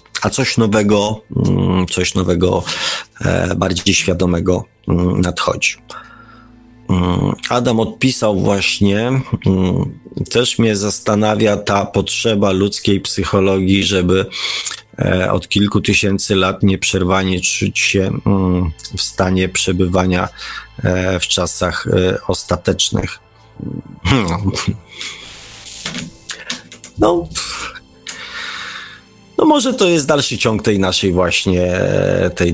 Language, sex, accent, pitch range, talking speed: Polish, male, native, 95-115 Hz, 80 wpm